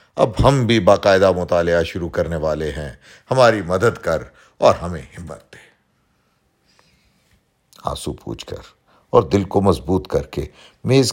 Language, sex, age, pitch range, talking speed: Urdu, male, 50-69, 80-110 Hz, 140 wpm